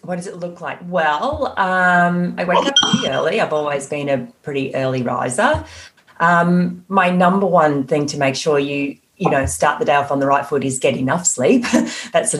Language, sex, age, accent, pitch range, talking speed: English, female, 30-49, Australian, 145-190 Hz, 215 wpm